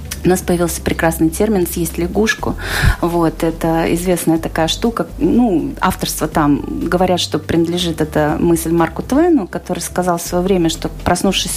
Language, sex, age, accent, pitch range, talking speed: Russian, female, 30-49, native, 175-225 Hz, 145 wpm